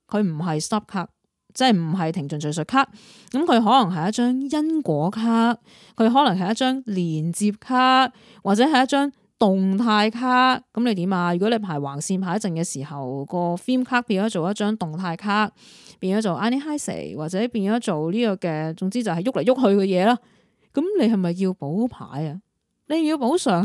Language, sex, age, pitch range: Chinese, female, 20-39, 175-235 Hz